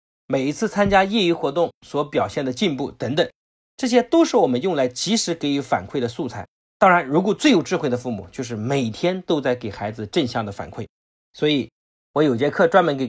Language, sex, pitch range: Chinese, male, 120-180 Hz